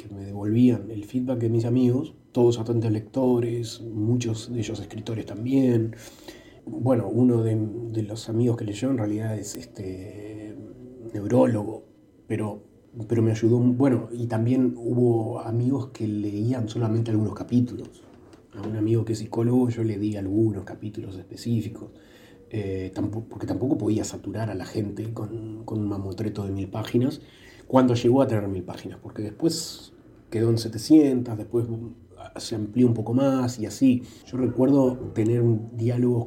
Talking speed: 155 wpm